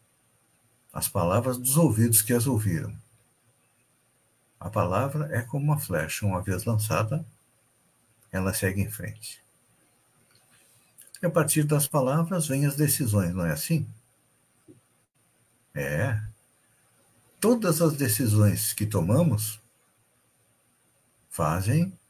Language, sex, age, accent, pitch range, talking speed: Portuguese, male, 60-79, Brazilian, 105-145 Hz, 105 wpm